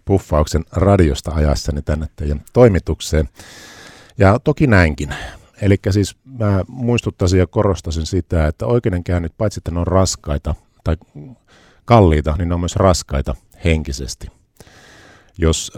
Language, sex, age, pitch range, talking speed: Finnish, male, 50-69, 80-100 Hz, 115 wpm